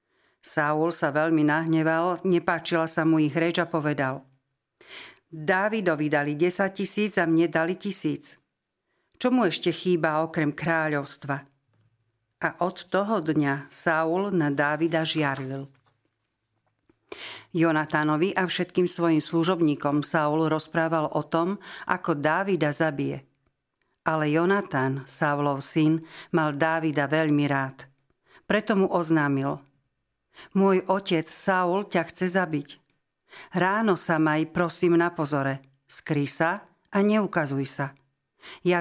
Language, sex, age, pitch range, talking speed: Slovak, female, 50-69, 145-175 Hz, 115 wpm